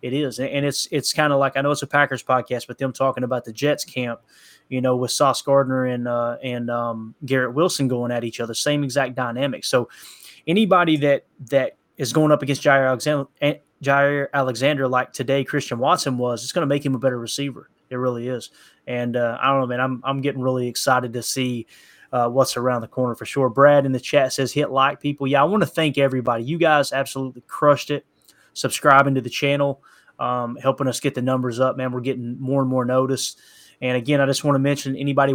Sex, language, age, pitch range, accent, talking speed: male, English, 20-39, 125-140 Hz, American, 225 wpm